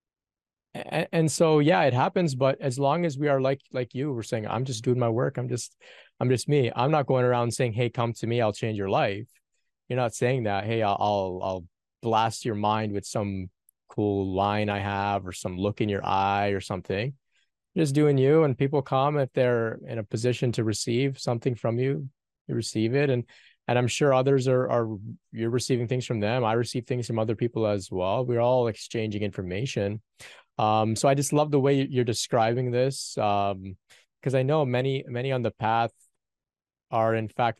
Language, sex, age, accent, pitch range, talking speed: English, male, 20-39, American, 105-130 Hz, 205 wpm